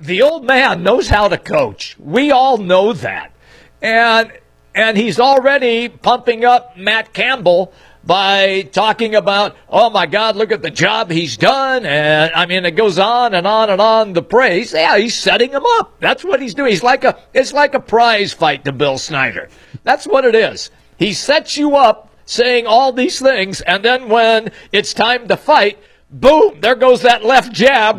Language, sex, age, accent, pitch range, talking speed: English, male, 50-69, American, 190-255 Hz, 190 wpm